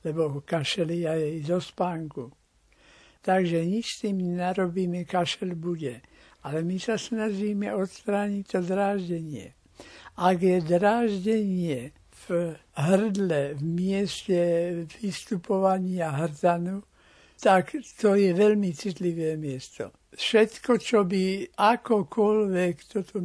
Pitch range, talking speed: 170-200 Hz, 105 wpm